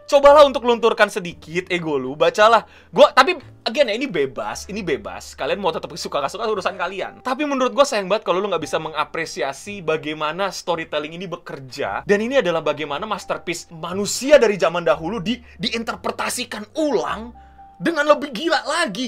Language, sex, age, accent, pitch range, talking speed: Indonesian, male, 20-39, native, 175-285 Hz, 160 wpm